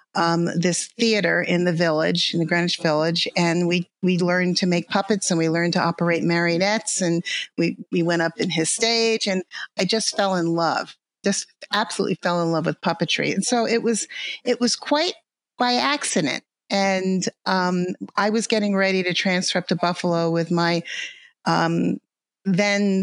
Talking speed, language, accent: 175 wpm, English, American